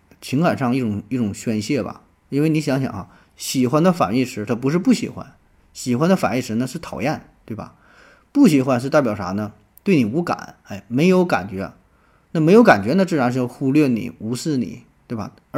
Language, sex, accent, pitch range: Chinese, male, native, 115-155 Hz